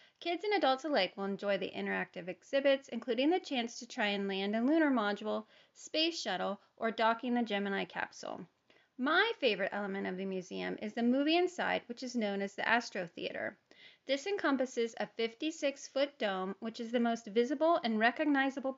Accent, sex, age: American, female, 30-49